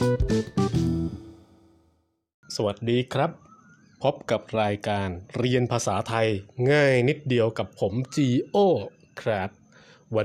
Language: Thai